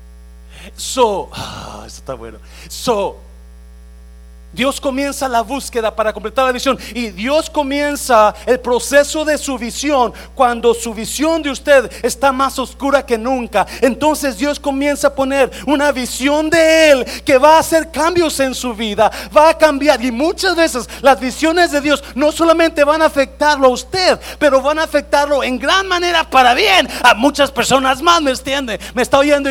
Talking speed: 170 wpm